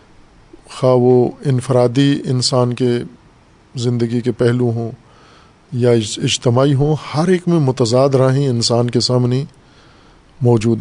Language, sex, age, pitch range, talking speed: Urdu, male, 50-69, 120-140 Hz, 115 wpm